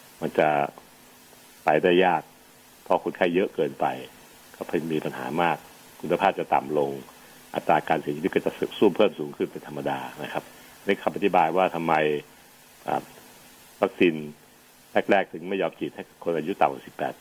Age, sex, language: 60-79, male, Thai